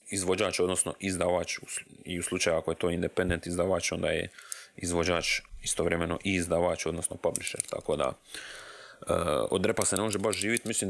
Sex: male